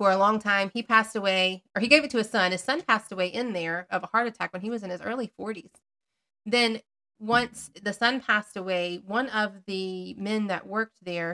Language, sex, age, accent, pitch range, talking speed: English, female, 30-49, American, 185-220 Hz, 235 wpm